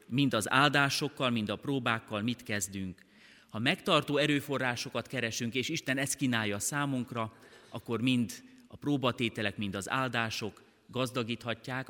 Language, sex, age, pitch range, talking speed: Hungarian, male, 30-49, 105-135 Hz, 125 wpm